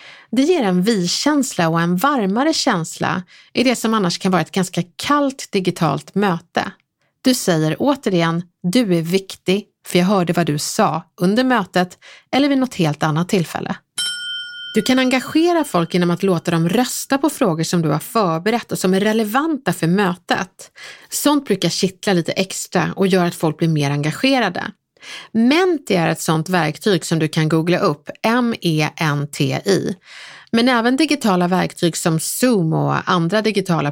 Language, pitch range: Swedish, 170-245 Hz